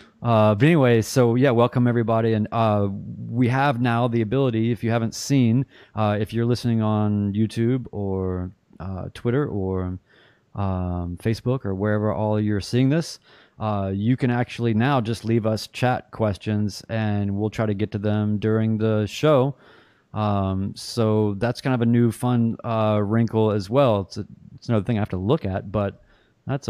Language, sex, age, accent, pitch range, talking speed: English, male, 30-49, American, 105-120 Hz, 180 wpm